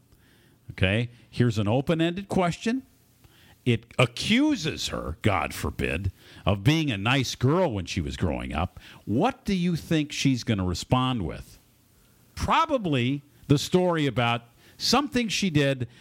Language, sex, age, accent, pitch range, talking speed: English, male, 50-69, American, 110-160 Hz, 140 wpm